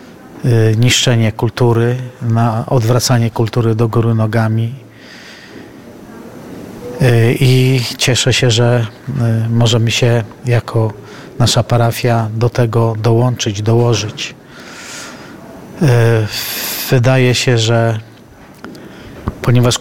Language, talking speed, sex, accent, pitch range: Polish, 75 wpm, male, native, 115-125 Hz